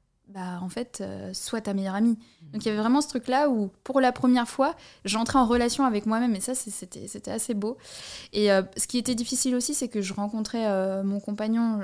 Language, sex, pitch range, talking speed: French, female, 205-245 Hz, 235 wpm